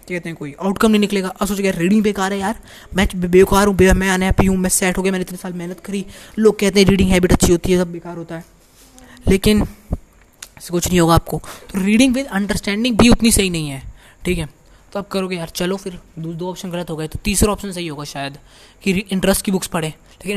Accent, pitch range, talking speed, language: native, 170-200 Hz, 240 wpm, Hindi